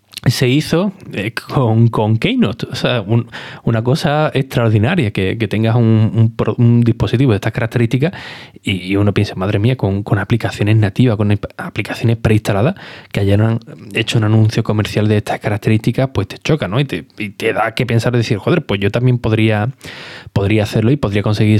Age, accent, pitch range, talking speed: 20-39, Spanish, 105-130 Hz, 185 wpm